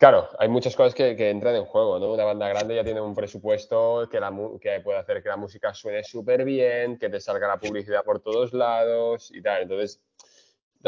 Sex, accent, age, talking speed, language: male, Spanish, 20-39, 220 wpm, Spanish